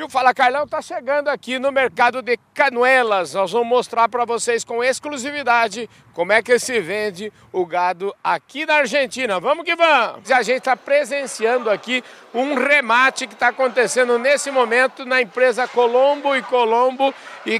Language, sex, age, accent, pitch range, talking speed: Portuguese, male, 50-69, Brazilian, 230-275 Hz, 165 wpm